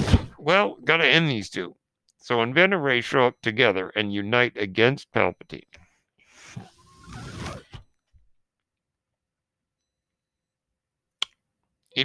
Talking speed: 75 wpm